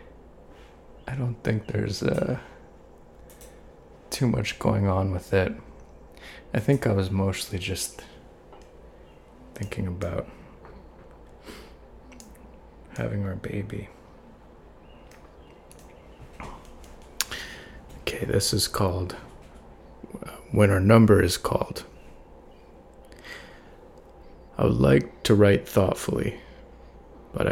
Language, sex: English, male